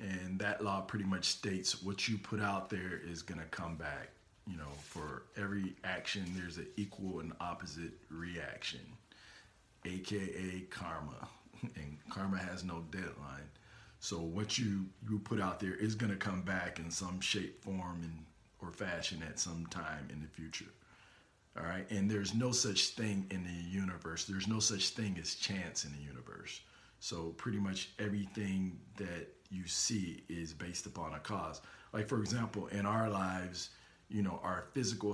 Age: 40-59